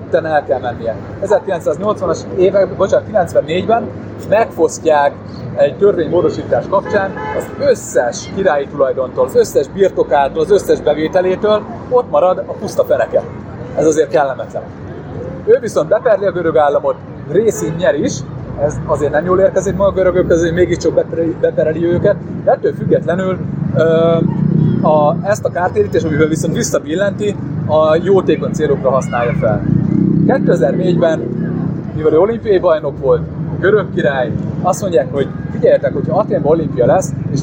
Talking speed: 130 wpm